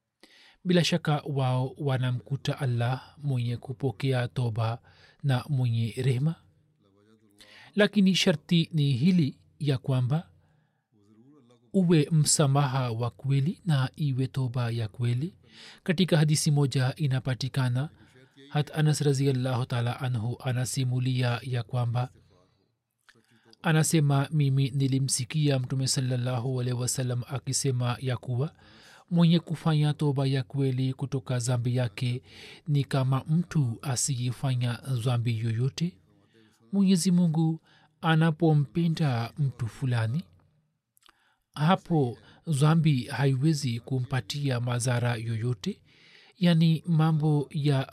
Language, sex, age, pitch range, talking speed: Swahili, male, 40-59, 125-155 Hz, 95 wpm